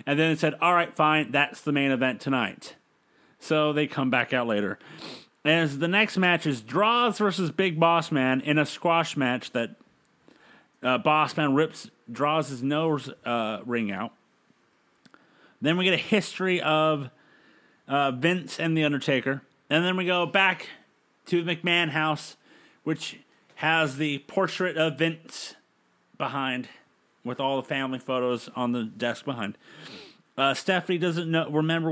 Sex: male